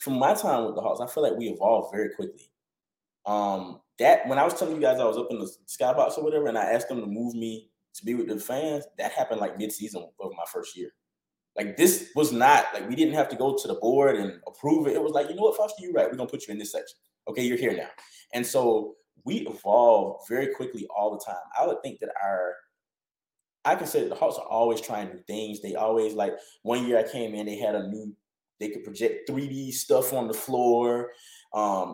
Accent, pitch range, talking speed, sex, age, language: American, 110-150 Hz, 255 wpm, male, 20-39, English